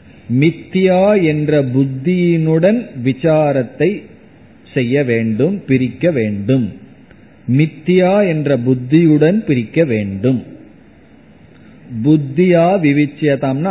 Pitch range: 130-165 Hz